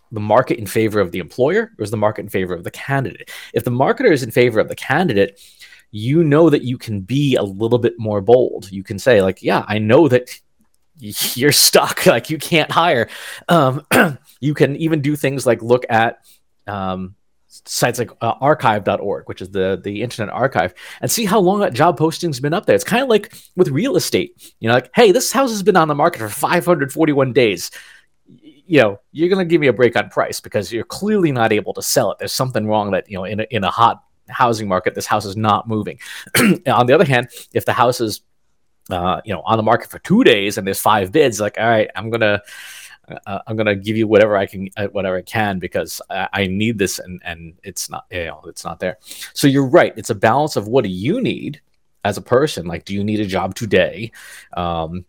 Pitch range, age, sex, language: 100-145 Hz, 30-49, male, English